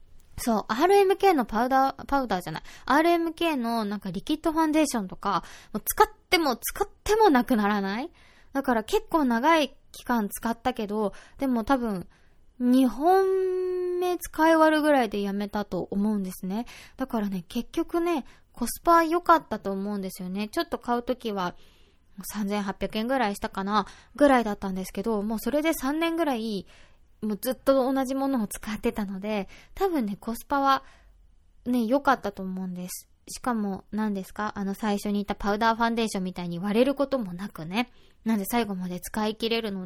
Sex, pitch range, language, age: female, 200-270 Hz, Japanese, 20-39